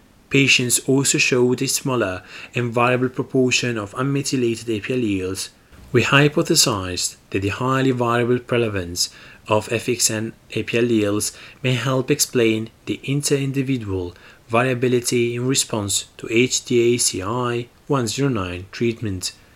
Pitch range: 110-130 Hz